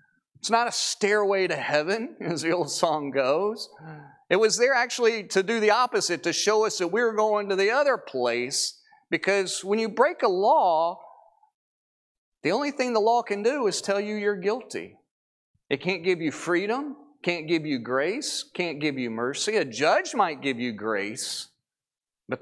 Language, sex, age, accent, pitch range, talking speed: English, male, 40-59, American, 155-235 Hz, 180 wpm